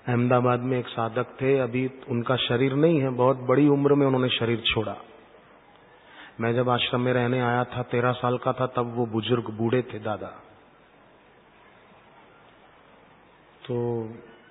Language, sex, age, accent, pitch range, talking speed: Hindi, male, 40-59, native, 115-140 Hz, 145 wpm